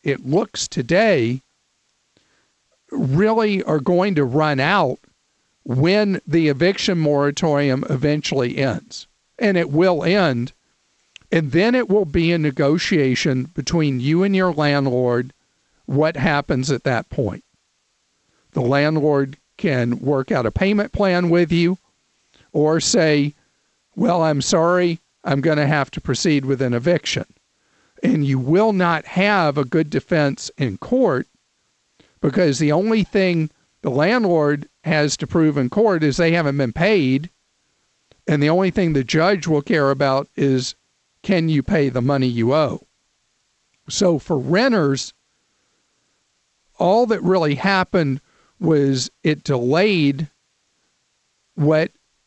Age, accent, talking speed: 50-69, American, 130 wpm